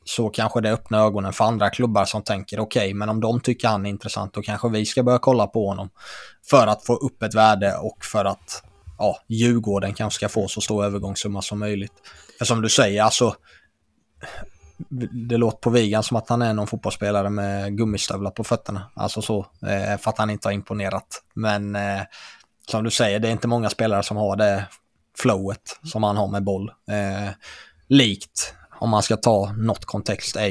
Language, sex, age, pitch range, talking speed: Swedish, male, 20-39, 100-115 Hz, 195 wpm